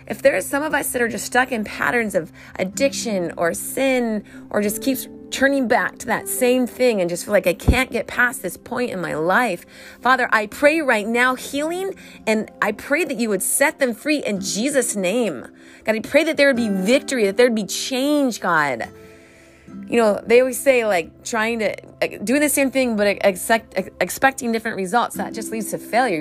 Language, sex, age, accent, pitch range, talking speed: English, female, 30-49, American, 195-260 Hz, 215 wpm